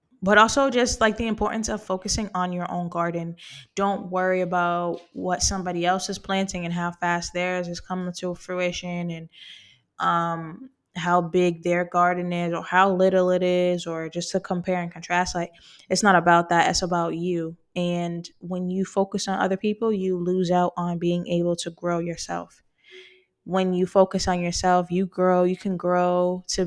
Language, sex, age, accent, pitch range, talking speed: English, female, 10-29, American, 175-190 Hz, 180 wpm